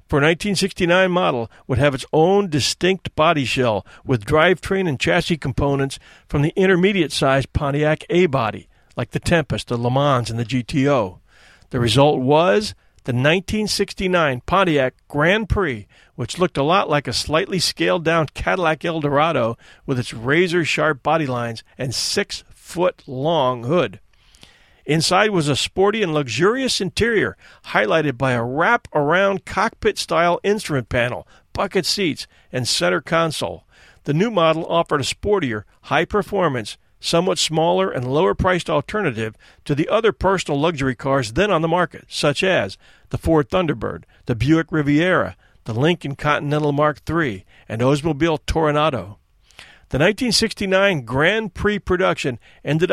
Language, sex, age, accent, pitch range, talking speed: English, male, 40-59, American, 130-175 Hz, 135 wpm